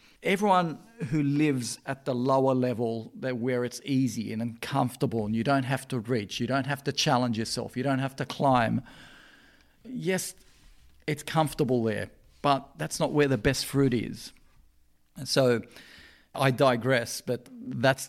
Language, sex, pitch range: English, male, 115-140 Hz